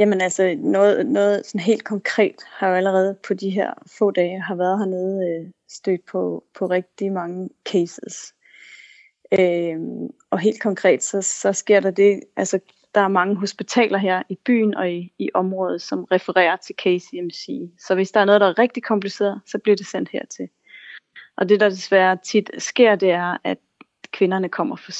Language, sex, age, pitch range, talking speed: Danish, female, 30-49, 180-205 Hz, 180 wpm